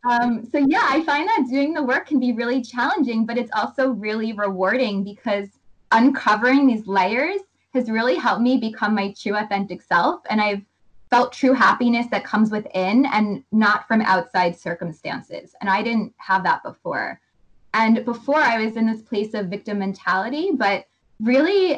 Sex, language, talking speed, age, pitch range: female, English, 170 wpm, 20-39, 200-250 Hz